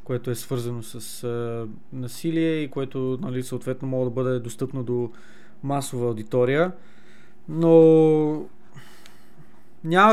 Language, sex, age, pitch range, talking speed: Bulgarian, male, 20-39, 135-165 Hz, 115 wpm